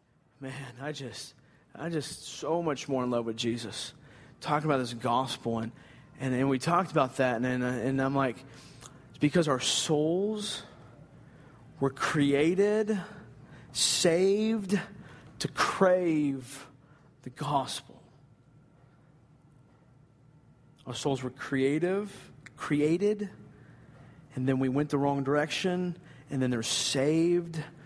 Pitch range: 125-150 Hz